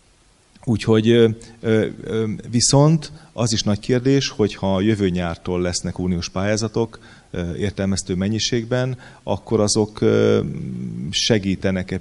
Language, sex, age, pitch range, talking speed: Hungarian, male, 30-49, 95-115 Hz, 90 wpm